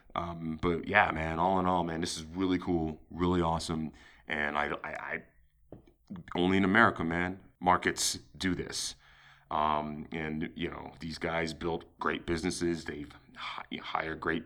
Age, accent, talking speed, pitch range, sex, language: 30-49, American, 155 wpm, 85-115 Hz, male, English